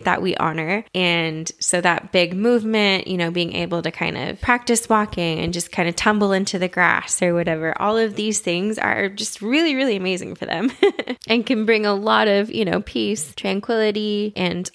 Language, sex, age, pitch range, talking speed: English, female, 20-39, 175-220 Hz, 200 wpm